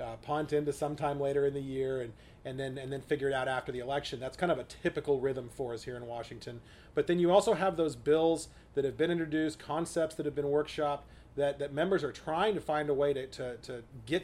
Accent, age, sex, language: American, 30-49, male, English